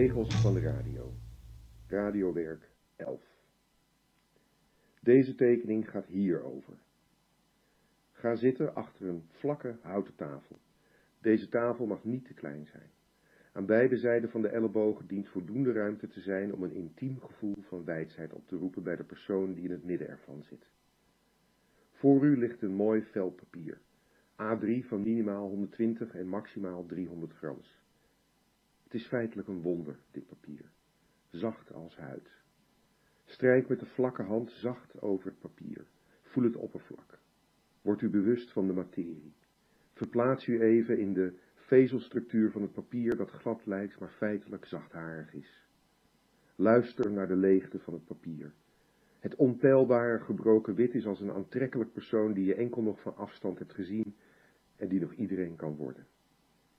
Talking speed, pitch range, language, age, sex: 150 wpm, 95-120 Hz, Dutch, 50-69, male